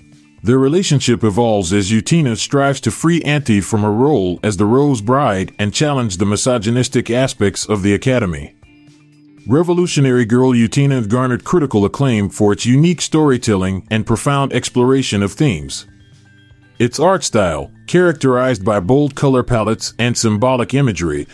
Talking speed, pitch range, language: 140 wpm, 105-140 Hz, English